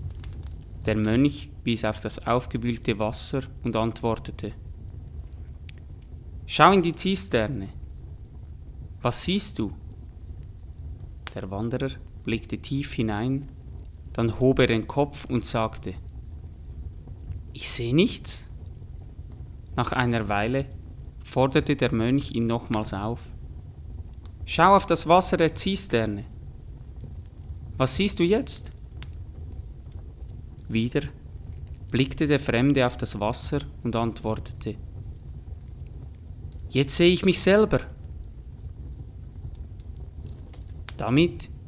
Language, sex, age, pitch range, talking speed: German, male, 30-49, 85-130 Hz, 95 wpm